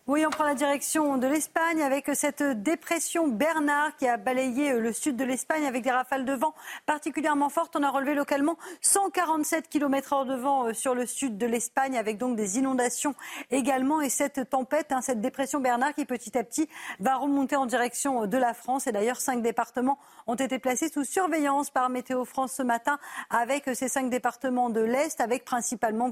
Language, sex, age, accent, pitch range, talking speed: French, female, 40-59, French, 240-285 Hz, 190 wpm